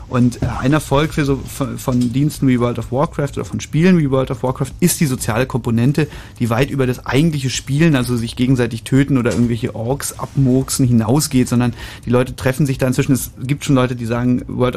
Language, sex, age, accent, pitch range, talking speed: German, male, 30-49, German, 120-145 Hz, 205 wpm